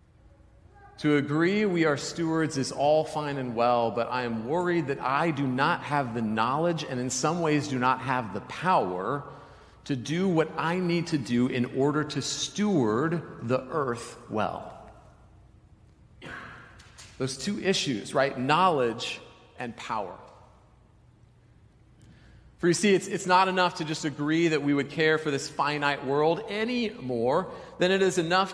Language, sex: English, male